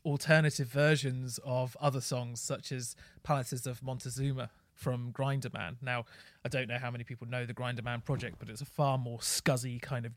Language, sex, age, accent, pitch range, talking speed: English, male, 30-49, British, 120-145 Hz, 195 wpm